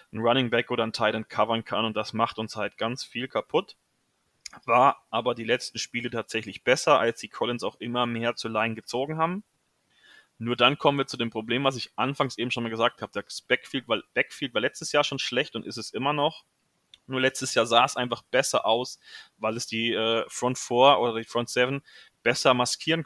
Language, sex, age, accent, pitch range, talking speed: German, male, 20-39, German, 115-135 Hz, 210 wpm